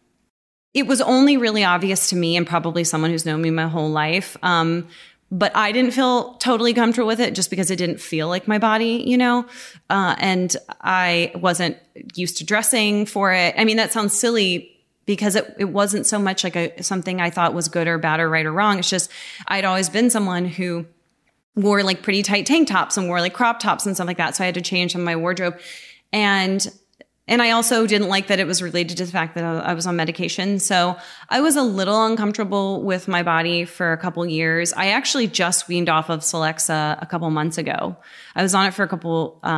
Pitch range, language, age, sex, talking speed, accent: 170-205 Hz, English, 30-49, female, 225 wpm, American